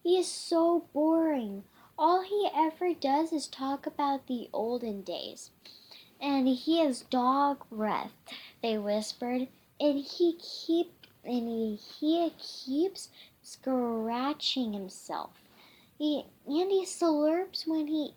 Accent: American